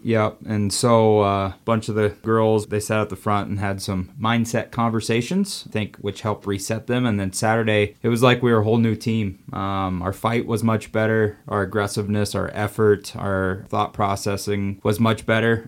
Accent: American